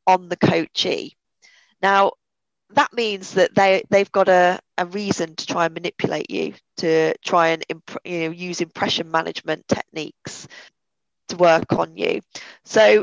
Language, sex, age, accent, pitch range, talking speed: English, female, 20-39, British, 175-205 Hz, 150 wpm